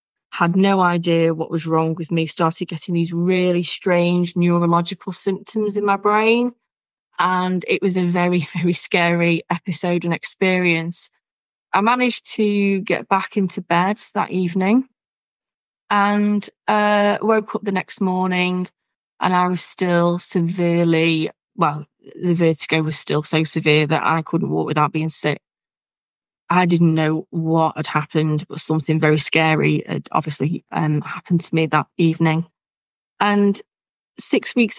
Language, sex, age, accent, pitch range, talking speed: English, female, 20-39, British, 160-185 Hz, 145 wpm